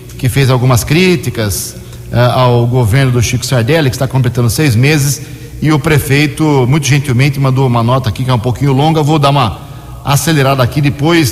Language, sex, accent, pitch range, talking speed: Portuguese, male, Brazilian, 125-150 Hz, 180 wpm